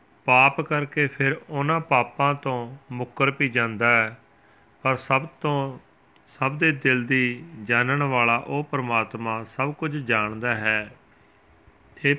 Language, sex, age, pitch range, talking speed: Punjabi, male, 40-59, 115-140 Hz, 130 wpm